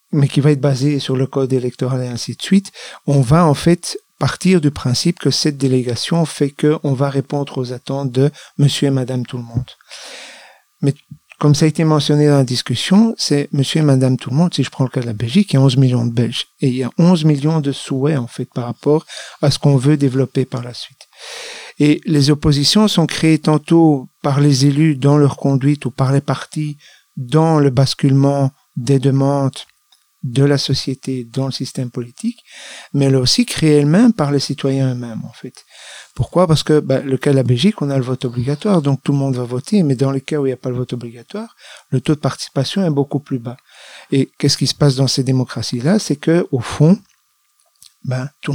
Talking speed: 225 wpm